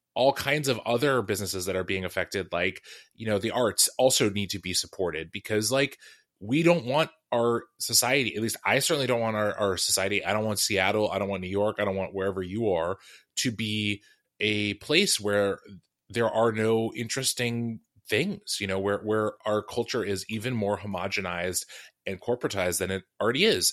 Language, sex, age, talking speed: English, male, 20-39, 190 wpm